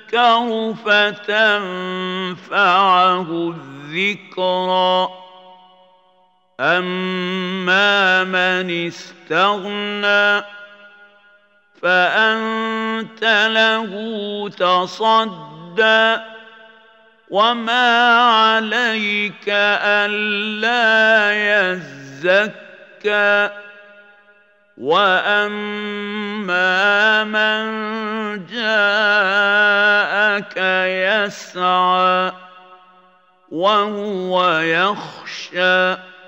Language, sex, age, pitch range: Arabic, male, 50-69, 185-210 Hz